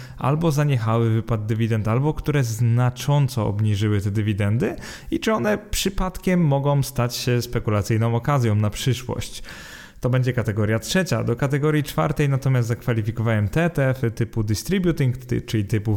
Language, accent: Polish, native